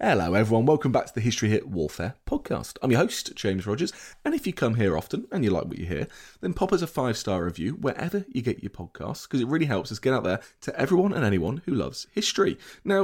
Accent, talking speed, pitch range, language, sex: British, 250 wpm, 100-140 Hz, English, male